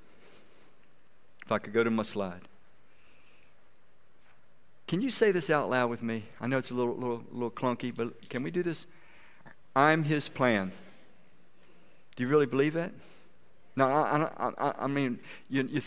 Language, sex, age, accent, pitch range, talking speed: English, male, 50-69, American, 115-155 Hz, 160 wpm